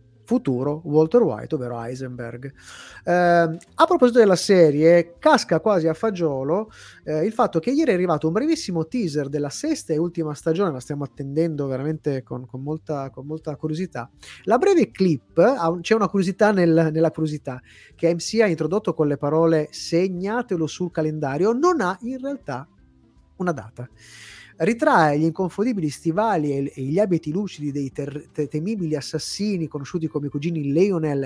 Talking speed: 150 wpm